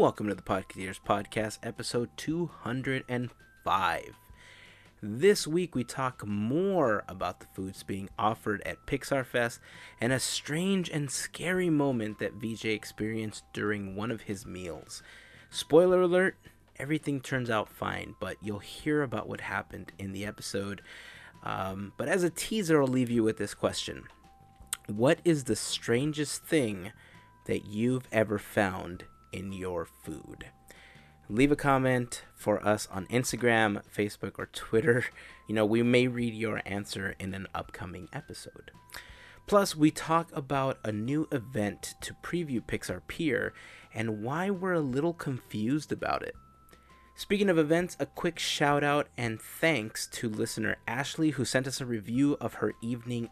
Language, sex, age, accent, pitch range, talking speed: English, male, 30-49, American, 105-140 Hz, 150 wpm